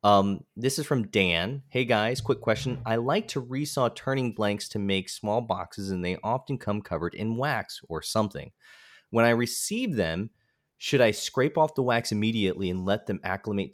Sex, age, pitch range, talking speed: male, 20-39, 95-125 Hz, 190 wpm